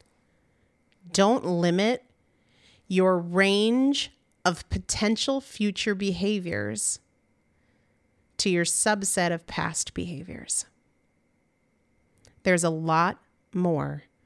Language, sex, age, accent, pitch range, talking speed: English, female, 30-49, American, 180-255 Hz, 75 wpm